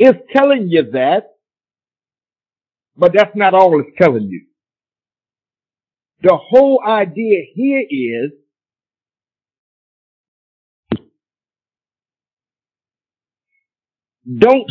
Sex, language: male, English